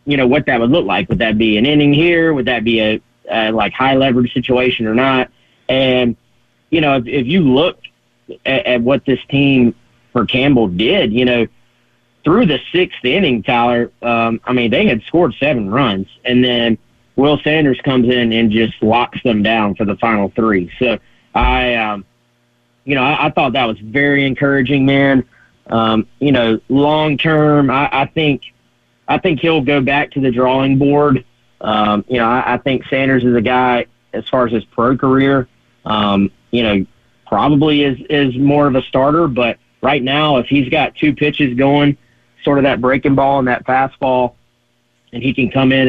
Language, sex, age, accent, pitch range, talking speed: English, male, 40-59, American, 115-140 Hz, 190 wpm